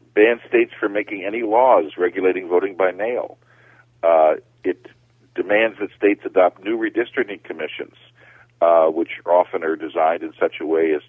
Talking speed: 155 wpm